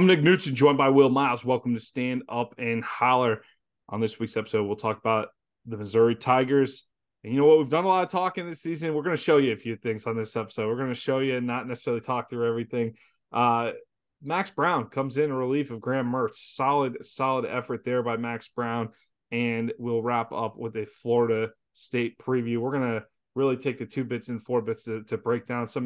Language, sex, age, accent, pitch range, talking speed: English, male, 20-39, American, 120-150 Hz, 230 wpm